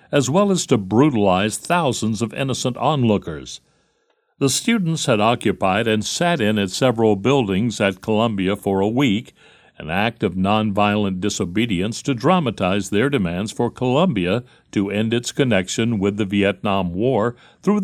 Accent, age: American, 60-79